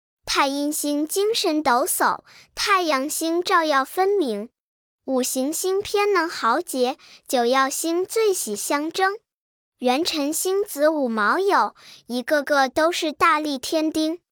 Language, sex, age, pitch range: Chinese, male, 10-29, 270-355 Hz